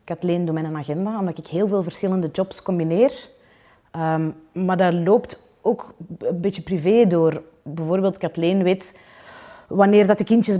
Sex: female